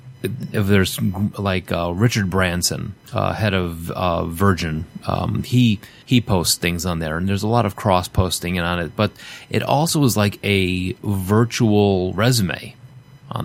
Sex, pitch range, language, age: male, 90-115 Hz, English, 30-49